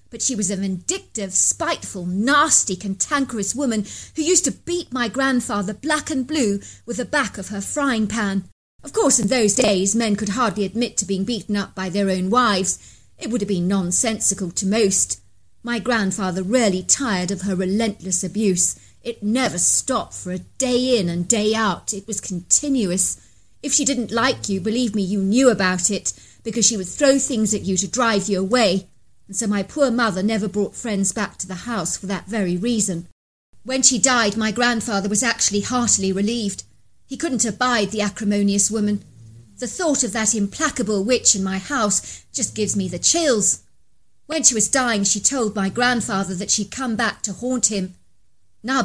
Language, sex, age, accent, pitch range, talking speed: English, female, 40-59, British, 195-245 Hz, 185 wpm